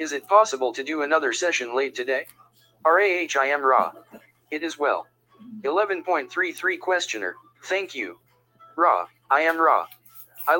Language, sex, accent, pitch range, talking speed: English, male, American, 130-200 Hz, 140 wpm